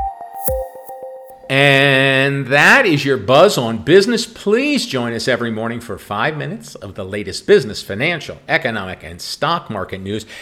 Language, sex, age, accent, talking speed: English, male, 40-59, American, 145 wpm